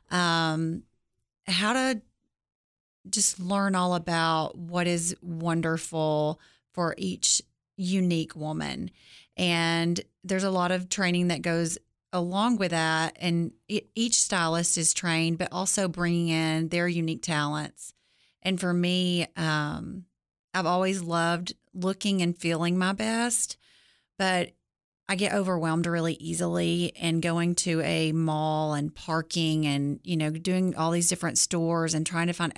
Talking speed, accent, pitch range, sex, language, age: 135 wpm, American, 160-180 Hz, female, English, 30-49